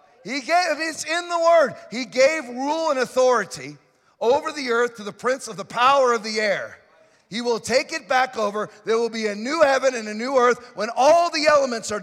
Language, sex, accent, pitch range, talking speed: English, male, American, 230-310 Hz, 220 wpm